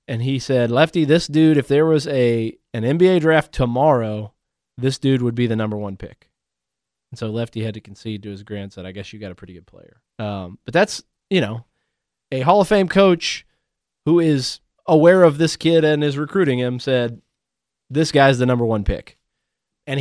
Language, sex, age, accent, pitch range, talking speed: English, male, 20-39, American, 115-150 Hz, 200 wpm